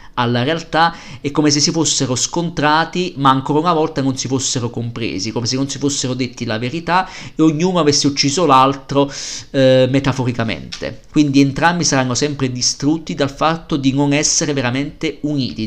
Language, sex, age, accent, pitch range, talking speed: Italian, male, 50-69, native, 125-160 Hz, 165 wpm